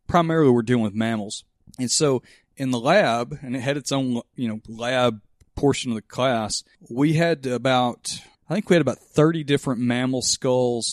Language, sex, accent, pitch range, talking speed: English, male, American, 115-140 Hz, 185 wpm